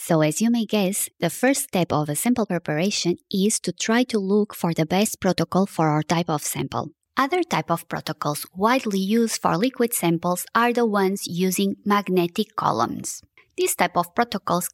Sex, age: female, 20-39